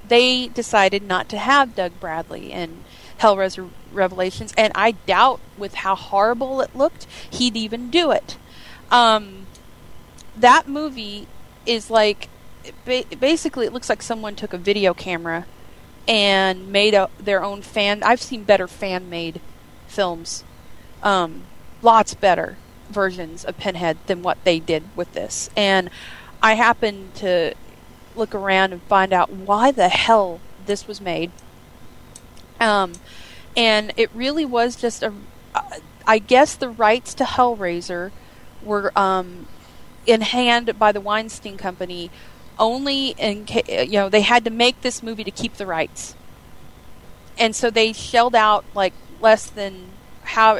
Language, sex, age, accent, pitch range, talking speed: English, female, 30-49, American, 185-235 Hz, 140 wpm